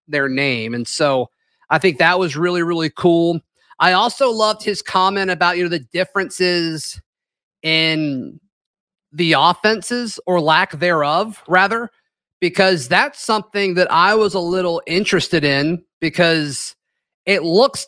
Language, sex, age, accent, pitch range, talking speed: English, male, 30-49, American, 155-185 Hz, 140 wpm